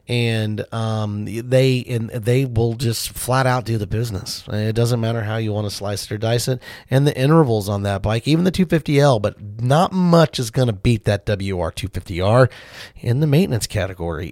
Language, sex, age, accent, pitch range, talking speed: English, male, 30-49, American, 105-130 Hz, 195 wpm